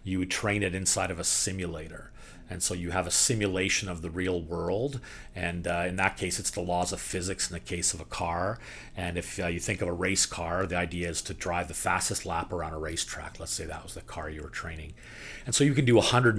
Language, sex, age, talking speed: English, male, 40-59, 255 wpm